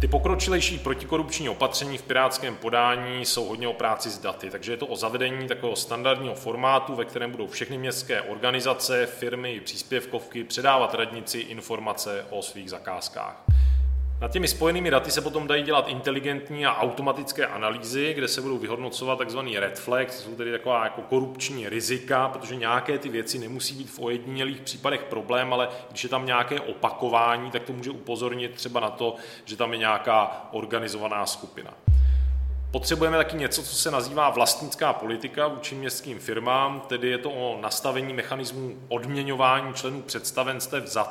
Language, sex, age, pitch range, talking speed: Czech, male, 20-39, 115-130 Hz, 160 wpm